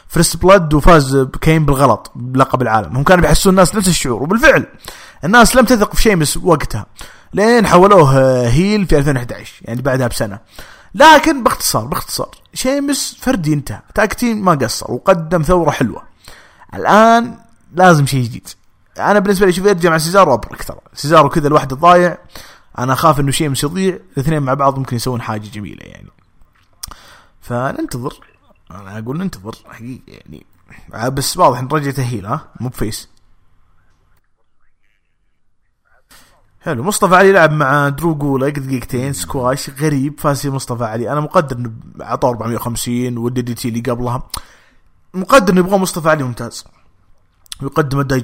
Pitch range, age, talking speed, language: 120-180 Hz, 30-49, 140 wpm, English